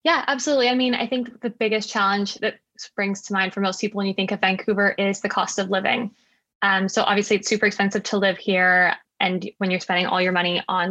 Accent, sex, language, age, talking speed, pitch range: American, female, English, 10-29, 235 wpm, 185-210 Hz